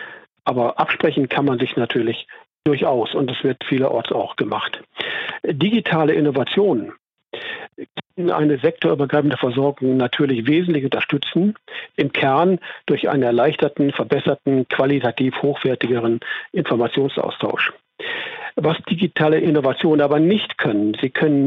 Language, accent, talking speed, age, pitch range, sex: German, German, 110 wpm, 50-69, 135-170 Hz, male